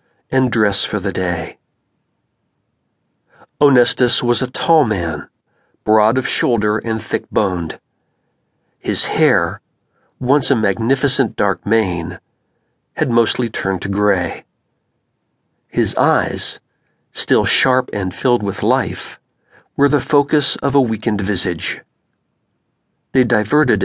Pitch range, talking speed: 105-130 Hz, 110 wpm